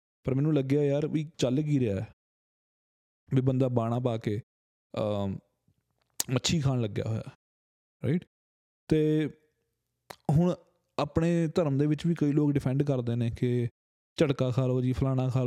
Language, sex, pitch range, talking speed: Punjabi, male, 110-140 Hz, 145 wpm